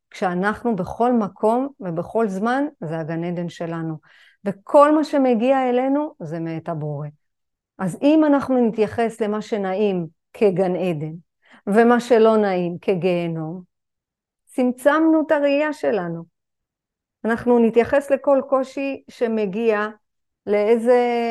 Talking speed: 105 wpm